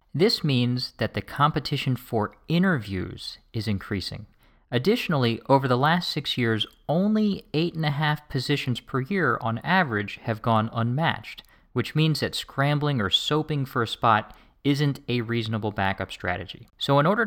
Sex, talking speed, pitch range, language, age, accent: male, 155 wpm, 105-140 Hz, English, 40-59, American